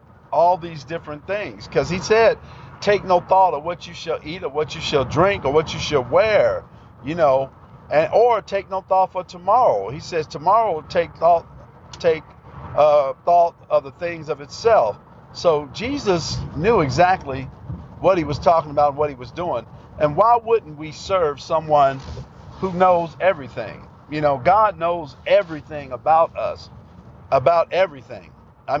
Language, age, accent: English, 50-69, American